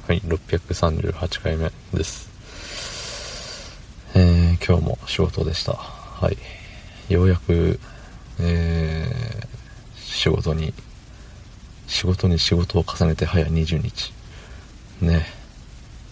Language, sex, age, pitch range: Japanese, male, 40-59, 80-95 Hz